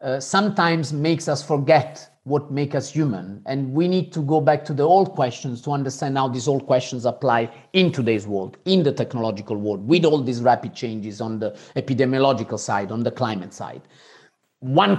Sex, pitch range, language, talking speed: male, 130-155 Hz, English, 190 wpm